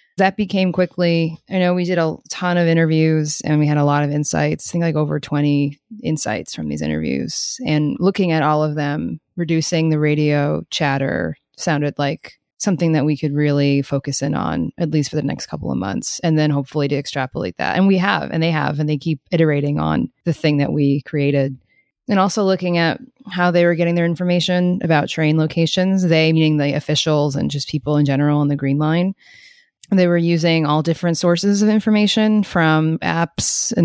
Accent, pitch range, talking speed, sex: American, 150-180 Hz, 200 wpm, female